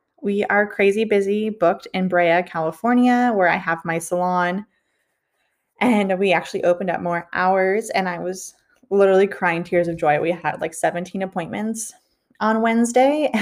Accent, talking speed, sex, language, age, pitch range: American, 155 wpm, female, English, 20-39, 175-205 Hz